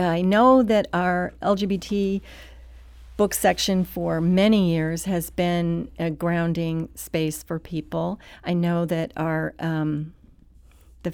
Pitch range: 155-175 Hz